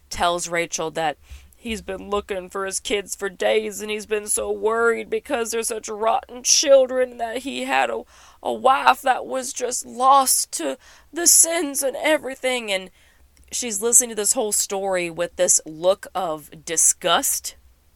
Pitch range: 170-215 Hz